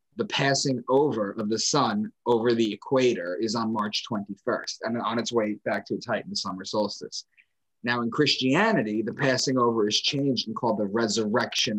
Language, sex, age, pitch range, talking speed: English, male, 30-49, 105-125 Hz, 190 wpm